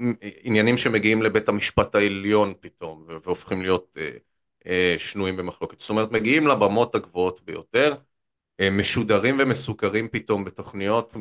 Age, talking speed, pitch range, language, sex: 30-49, 125 wpm, 90-110 Hz, Hebrew, male